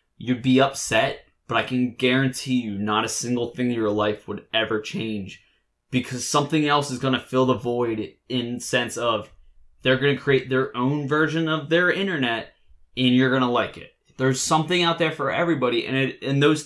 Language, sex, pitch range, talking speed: English, male, 110-140 Hz, 190 wpm